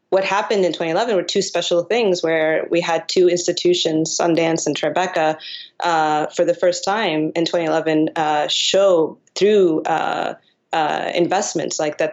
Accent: American